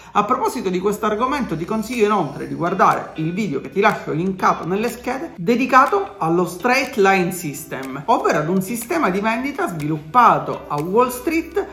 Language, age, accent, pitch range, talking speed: Italian, 40-59, native, 185-270 Hz, 170 wpm